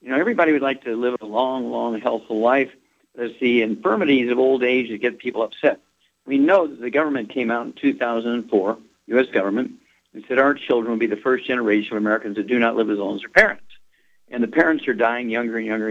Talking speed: 230 wpm